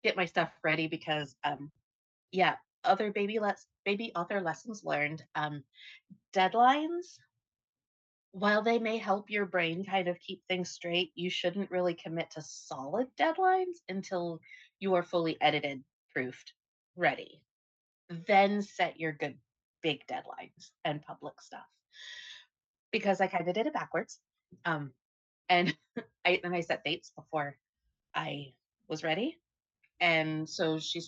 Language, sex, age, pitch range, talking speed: English, female, 30-49, 155-195 Hz, 135 wpm